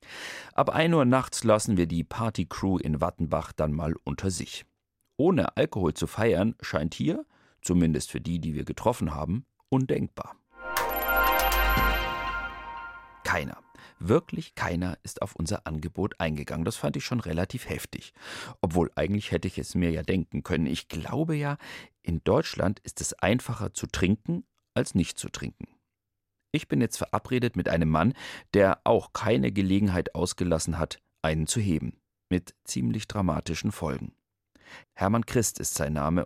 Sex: male